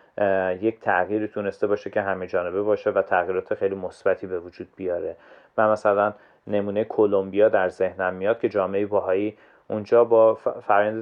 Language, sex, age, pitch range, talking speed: Persian, male, 40-59, 100-125 Hz, 150 wpm